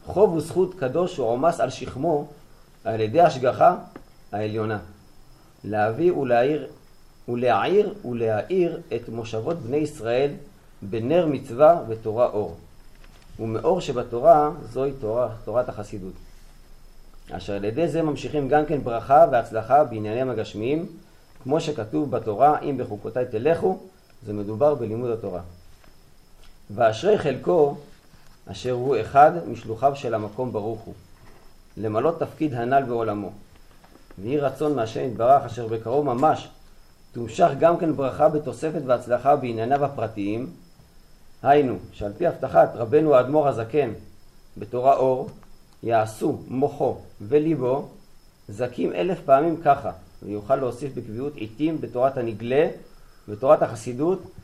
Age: 40-59